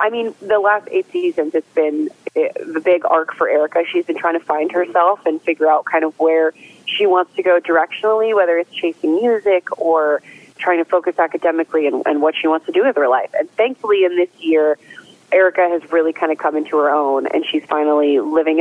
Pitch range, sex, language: 155-190 Hz, female, English